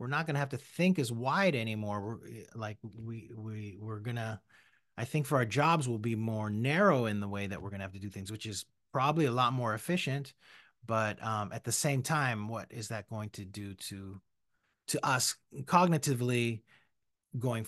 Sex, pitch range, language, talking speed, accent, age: male, 105-145 Hz, English, 195 wpm, American, 30-49